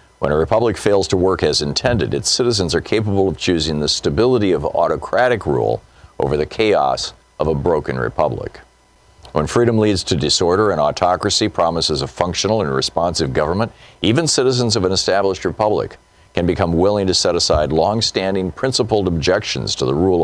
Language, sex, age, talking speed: English, male, 50-69, 170 wpm